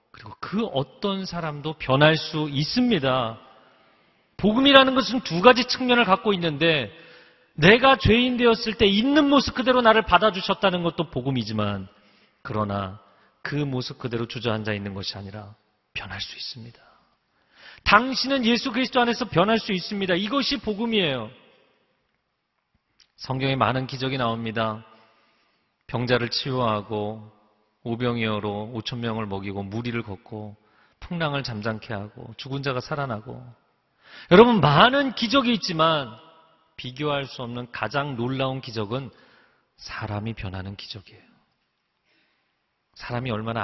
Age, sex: 40-59, male